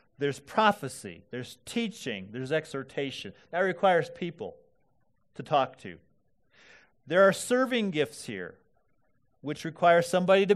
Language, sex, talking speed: English, male, 120 wpm